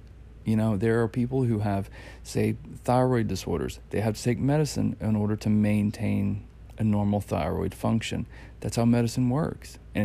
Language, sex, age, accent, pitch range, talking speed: English, male, 40-59, American, 105-125 Hz, 165 wpm